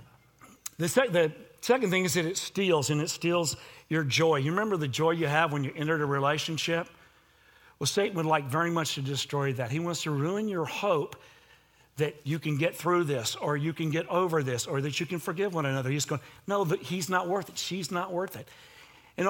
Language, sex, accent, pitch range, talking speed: English, male, American, 145-190 Hz, 220 wpm